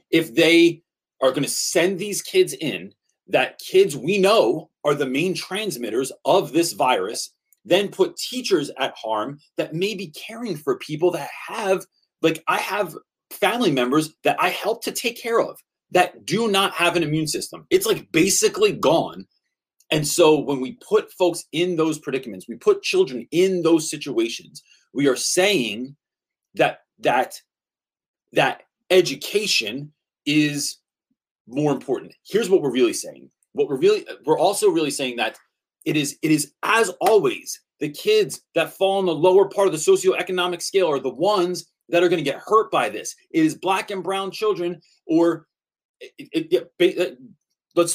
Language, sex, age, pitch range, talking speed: English, male, 30-49, 160-240 Hz, 170 wpm